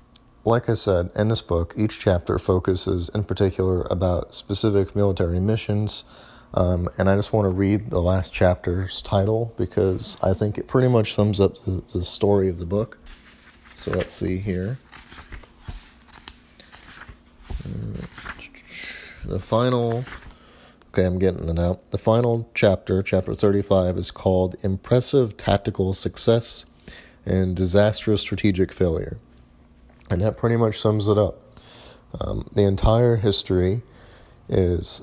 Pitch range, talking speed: 90-105 Hz, 130 wpm